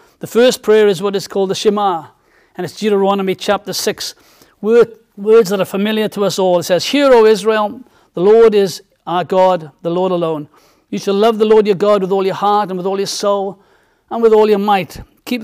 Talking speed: 220 wpm